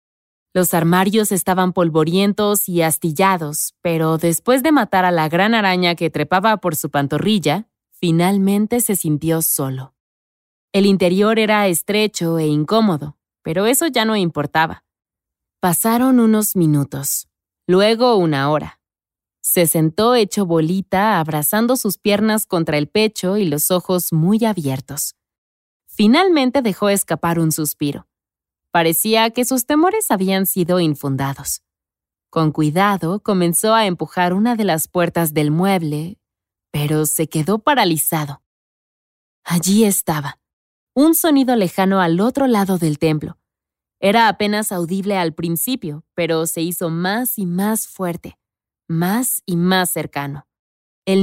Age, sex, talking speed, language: 20-39, female, 130 wpm, Spanish